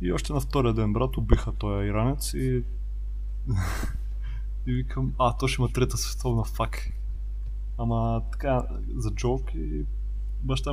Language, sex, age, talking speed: Bulgarian, male, 20-39, 140 wpm